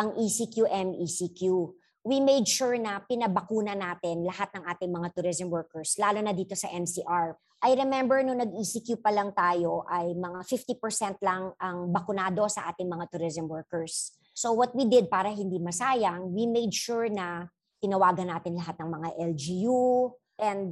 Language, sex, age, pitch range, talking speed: Filipino, male, 50-69, 175-235 Hz, 160 wpm